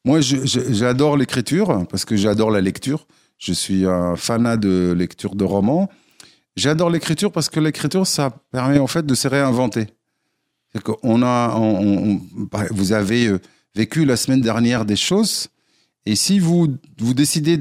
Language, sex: French, male